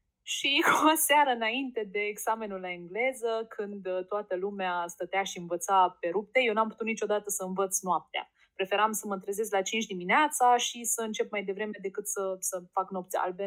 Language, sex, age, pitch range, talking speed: Romanian, female, 20-39, 210-300 Hz, 185 wpm